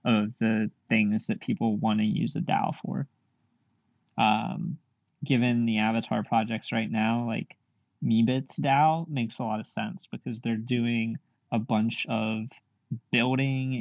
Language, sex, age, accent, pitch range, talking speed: English, male, 20-39, American, 115-130 Hz, 145 wpm